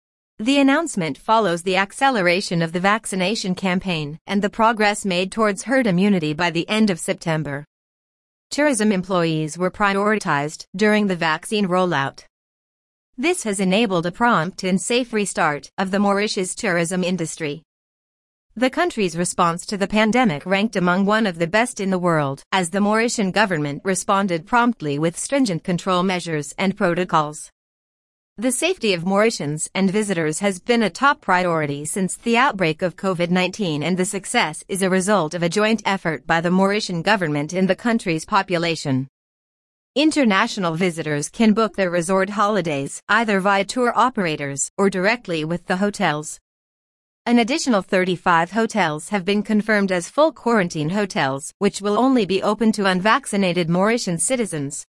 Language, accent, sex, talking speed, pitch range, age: English, American, female, 155 wpm, 170-215 Hz, 30-49